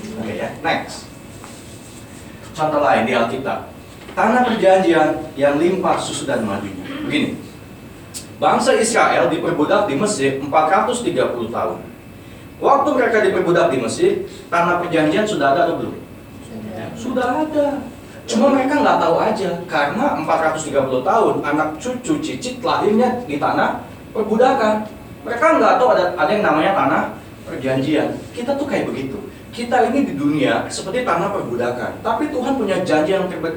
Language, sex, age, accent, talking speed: Indonesian, male, 30-49, native, 140 wpm